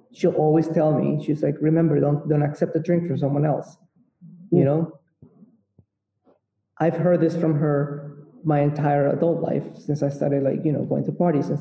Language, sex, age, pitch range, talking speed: English, male, 20-39, 140-160 Hz, 185 wpm